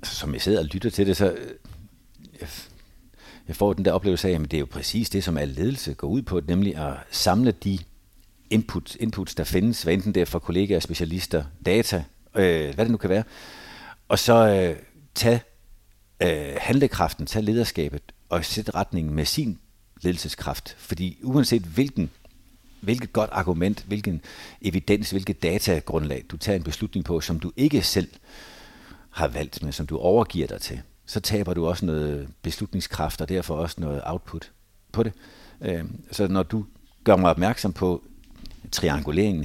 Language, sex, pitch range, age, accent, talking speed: Danish, male, 80-105 Hz, 60-79, native, 165 wpm